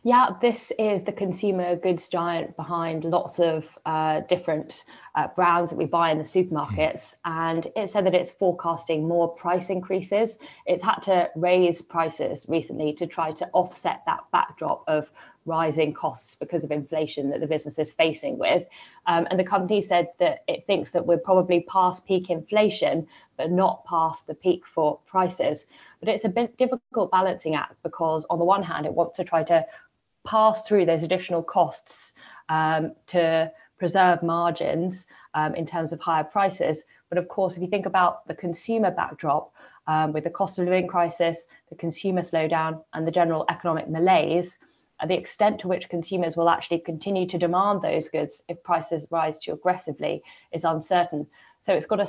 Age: 20-39